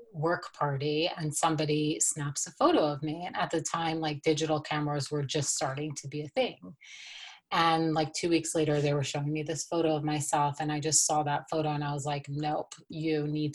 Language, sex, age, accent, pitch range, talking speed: English, female, 30-49, American, 150-160 Hz, 215 wpm